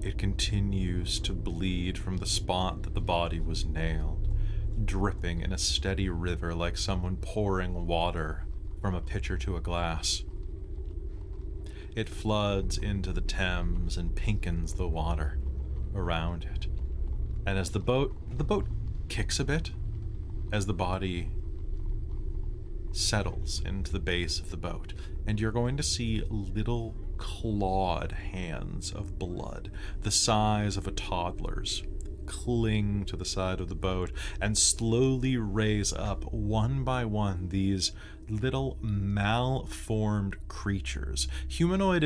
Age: 30-49